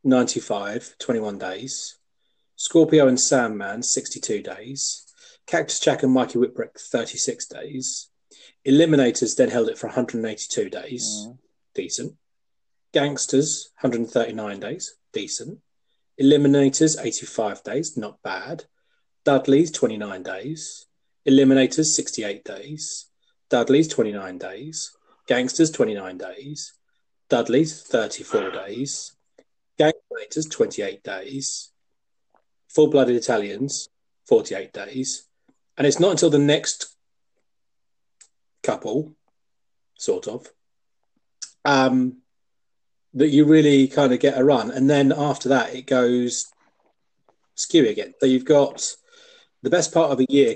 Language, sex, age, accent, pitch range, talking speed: English, male, 30-49, British, 125-155 Hz, 105 wpm